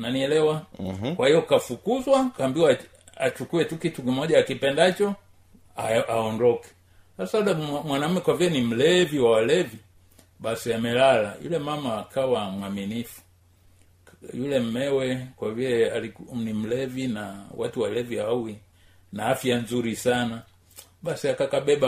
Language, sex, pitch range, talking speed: Swahili, male, 100-135 Hz, 110 wpm